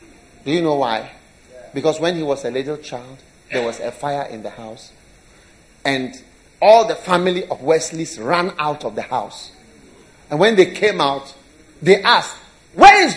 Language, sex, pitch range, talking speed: English, male, 150-245 Hz, 175 wpm